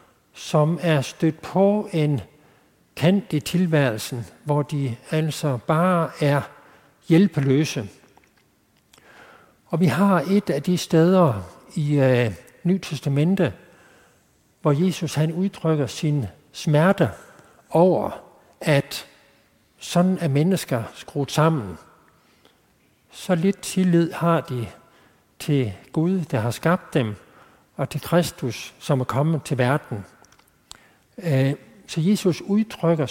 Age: 60-79